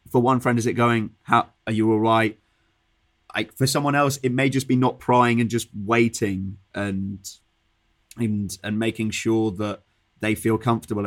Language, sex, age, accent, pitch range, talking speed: English, male, 20-39, British, 100-120 Hz, 180 wpm